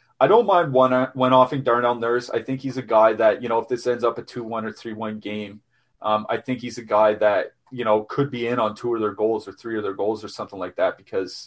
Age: 30-49